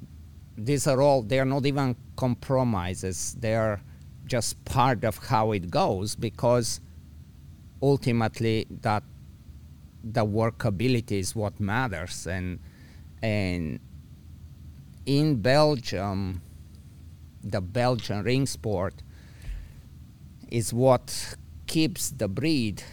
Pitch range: 90-115 Hz